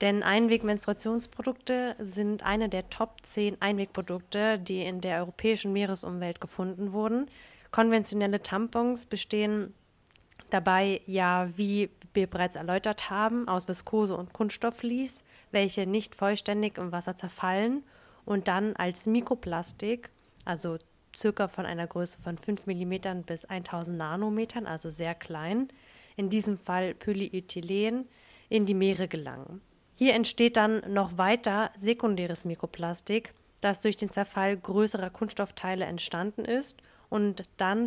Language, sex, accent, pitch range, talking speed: German, female, German, 185-225 Hz, 125 wpm